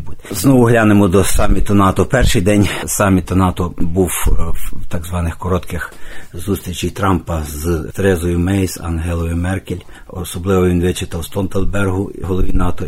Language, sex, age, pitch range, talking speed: Ukrainian, male, 50-69, 85-100 Hz, 130 wpm